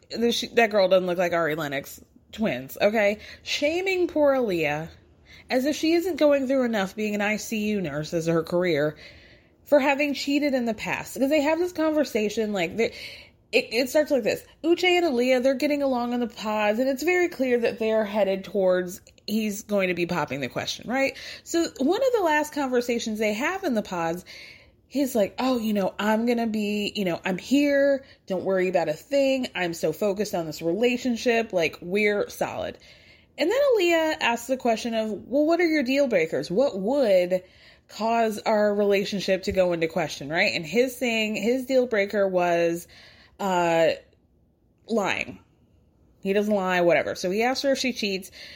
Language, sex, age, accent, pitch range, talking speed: English, female, 20-39, American, 190-280 Hz, 185 wpm